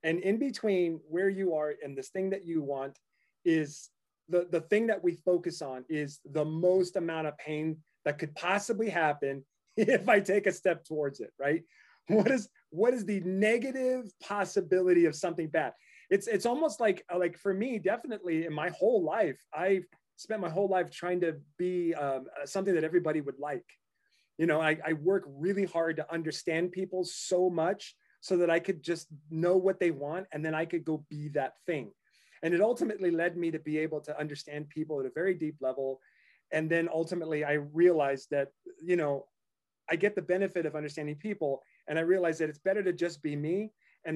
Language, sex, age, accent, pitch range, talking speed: English, male, 30-49, American, 150-185 Hz, 195 wpm